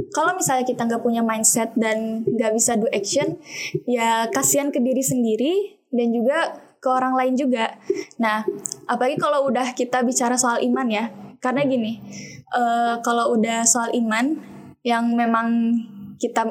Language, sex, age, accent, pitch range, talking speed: Indonesian, female, 10-29, native, 230-270 Hz, 150 wpm